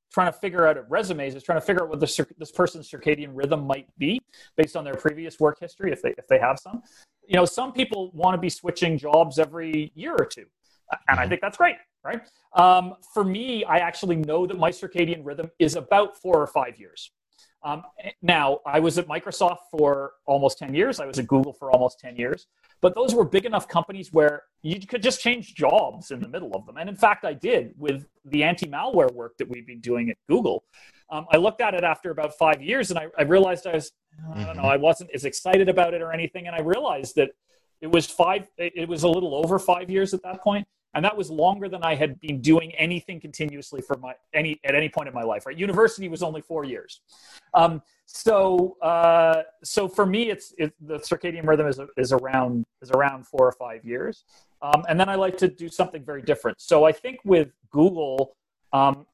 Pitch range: 150-190 Hz